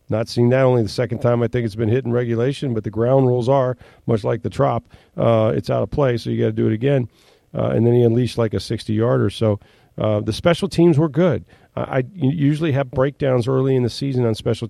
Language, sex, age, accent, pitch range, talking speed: English, male, 40-59, American, 110-130 Hz, 255 wpm